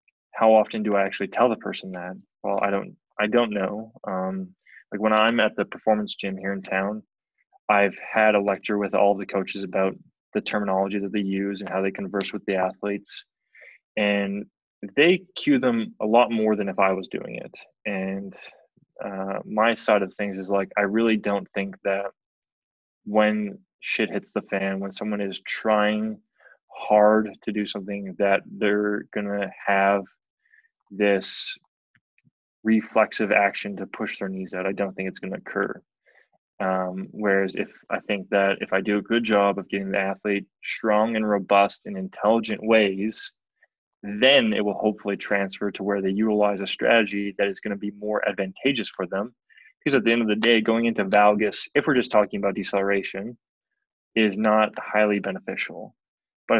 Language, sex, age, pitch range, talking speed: English, male, 20-39, 100-110 Hz, 180 wpm